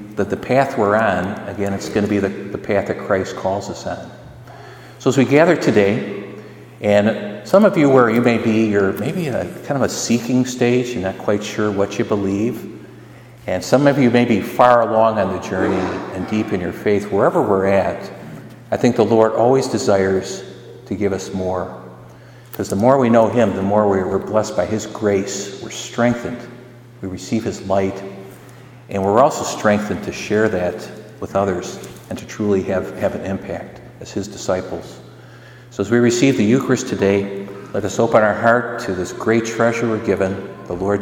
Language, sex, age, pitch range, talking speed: English, male, 50-69, 100-120 Hz, 195 wpm